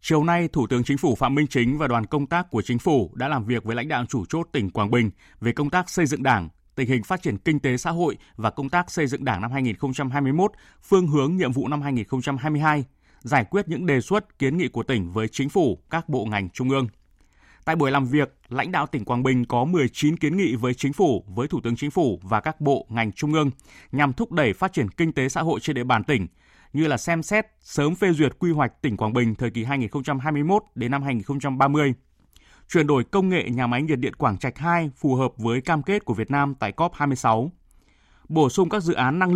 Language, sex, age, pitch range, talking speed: Vietnamese, male, 20-39, 120-160 Hz, 240 wpm